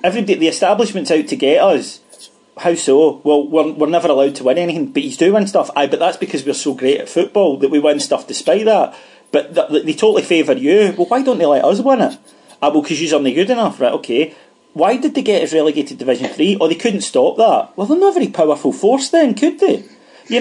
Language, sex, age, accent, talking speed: English, male, 40-59, British, 255 wpm